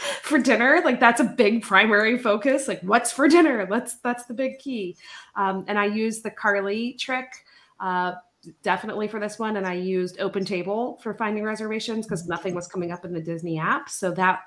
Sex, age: female, 30-49